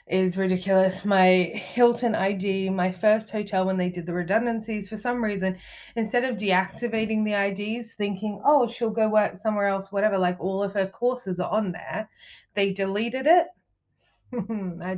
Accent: Australian